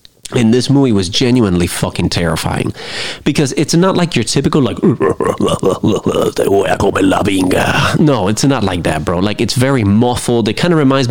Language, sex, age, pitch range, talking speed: English, male, 30-49, 95-130 Hz, 150 wpm